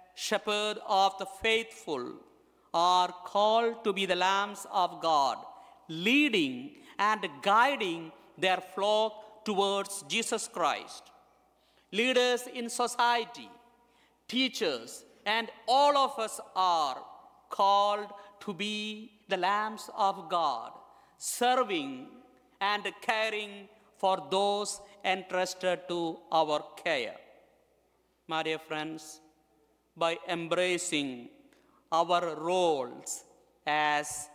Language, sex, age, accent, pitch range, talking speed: English, male, 50-69, Indian, 165-215 Hz, 95 wpm